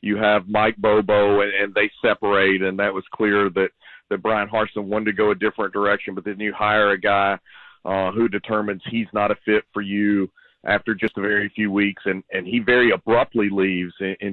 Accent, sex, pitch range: American, male, 100-120 Hz